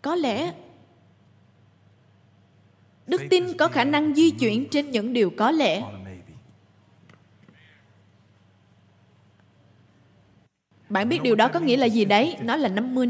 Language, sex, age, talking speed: Vietnamese, female, 20-39, 120 wpm